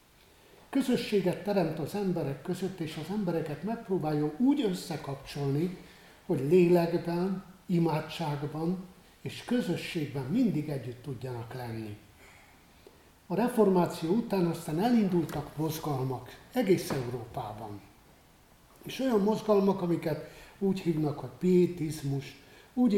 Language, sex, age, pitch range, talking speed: Hungarian, male, 60-79, 145-185 Hz, 95 wpm